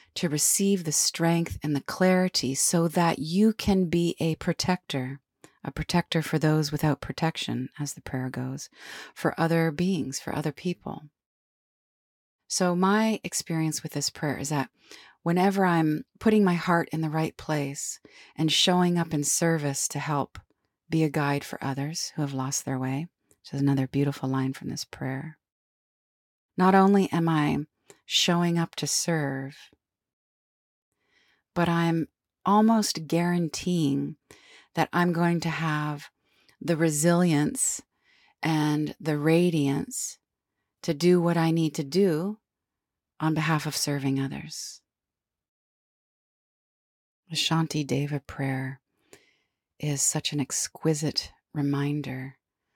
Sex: female